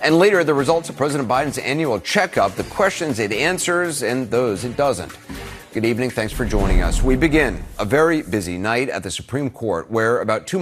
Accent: American